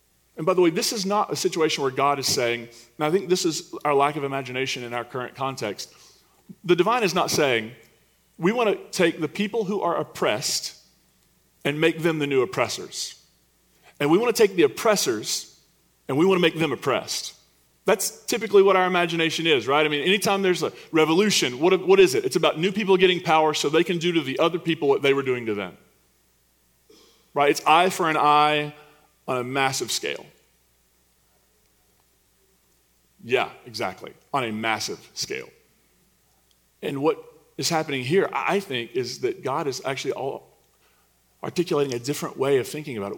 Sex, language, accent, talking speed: male, English, American, 185 wpm